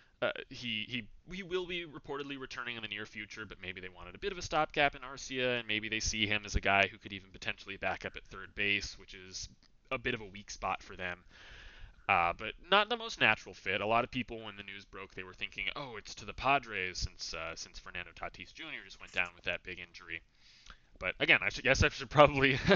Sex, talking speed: male, 250 wpm